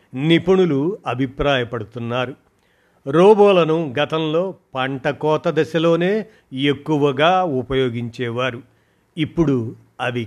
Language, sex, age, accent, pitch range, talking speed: Telugu, male, 50-69, native, 130-165 Hz, 65 wpm